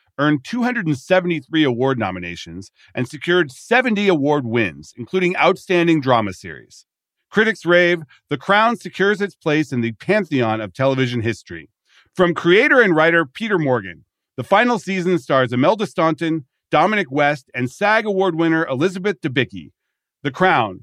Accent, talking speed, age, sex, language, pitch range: American, 140 wpm, 40-59, male, English, 115-175 Hz